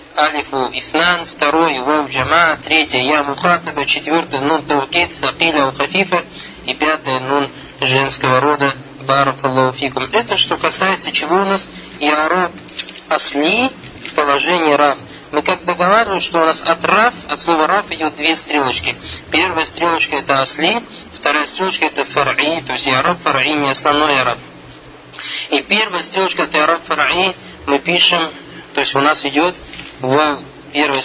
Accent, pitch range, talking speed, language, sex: native, 140-165 Hz, 150 wpm, Russian, male